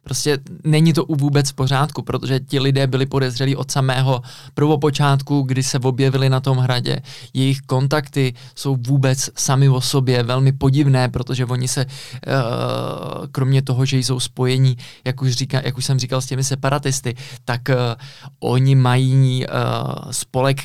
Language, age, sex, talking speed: Czech, 20-39, male, 150 wpm